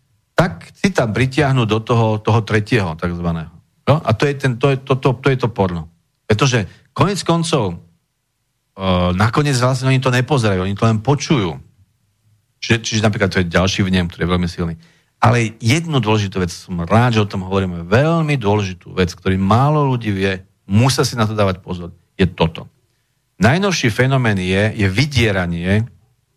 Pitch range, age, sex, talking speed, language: 95-125 Hz, 50-69, male, 175 wpm, English